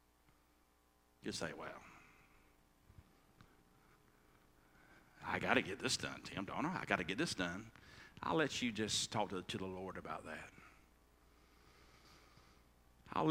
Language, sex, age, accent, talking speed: English, male, 50-69, American, 125 wpm